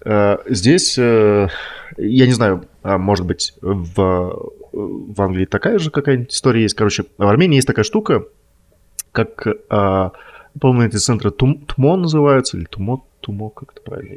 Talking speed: 135 wpm